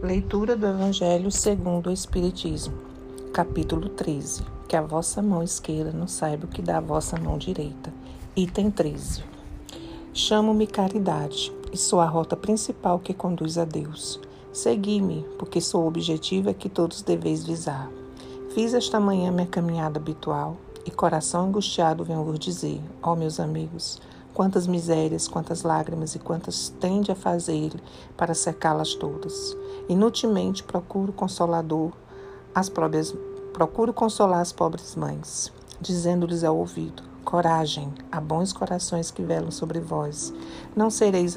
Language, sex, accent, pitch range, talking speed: Portuguese, female, Brazilian, 155-190 Hz, 140 wpm